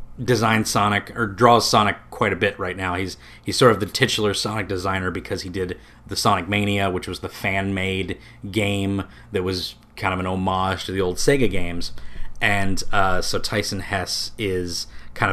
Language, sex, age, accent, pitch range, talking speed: English, male, 30-49, American, 95-110 Hz, 185 wpm